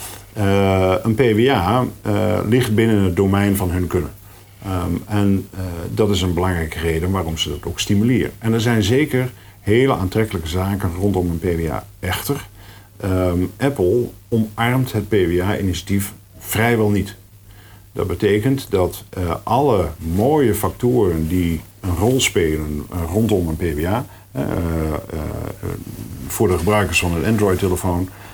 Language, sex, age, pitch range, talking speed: Dutch, male, 50-69, 90-105 Hz, 130 wpm